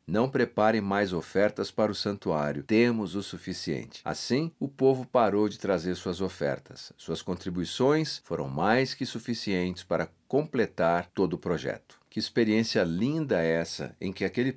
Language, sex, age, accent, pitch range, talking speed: Portuguese, male, 50-69, Brazilian, 90-110 Hz, 150 wpm